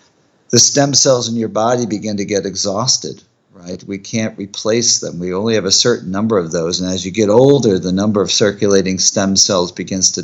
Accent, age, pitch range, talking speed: American, 50-69, 100-125 Hz, 210 wpm